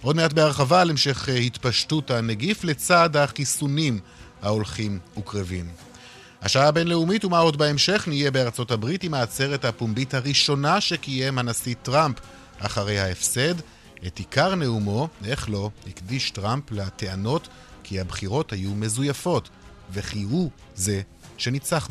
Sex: male